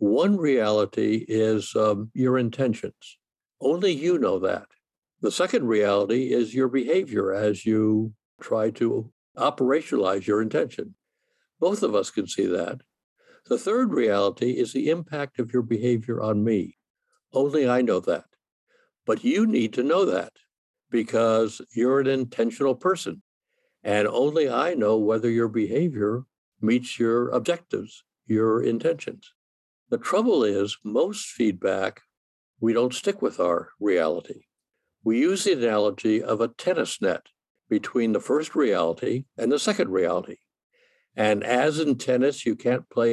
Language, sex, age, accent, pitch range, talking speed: English, male, 60-79, American, 110-140 Hz, 140 wpm